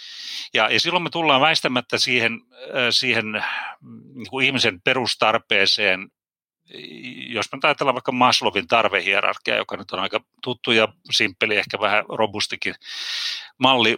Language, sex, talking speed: Finnish, male, 115 wpm